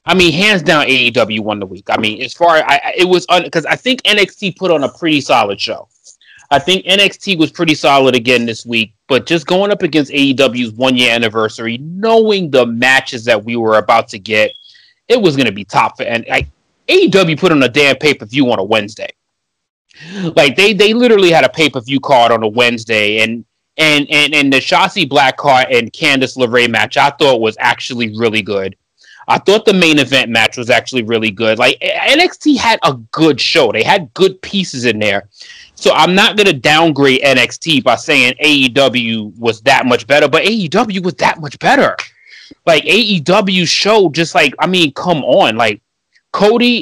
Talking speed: 195 wpm